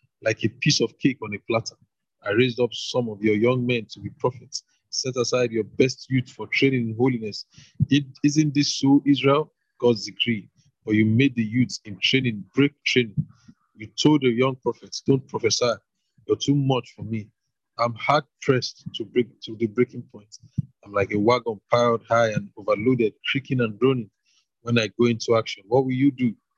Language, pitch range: English, 115-135 Hz